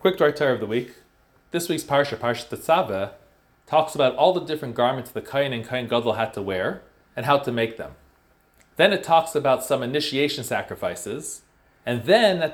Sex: male